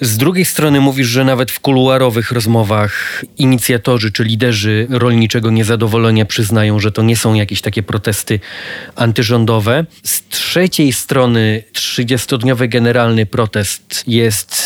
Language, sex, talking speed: Polish, male, 125 wpm